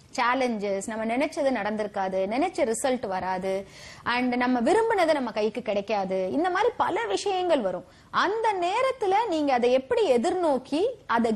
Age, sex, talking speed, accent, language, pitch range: 30-49, female, 135 wpm, Indian, English, 230-365 Hz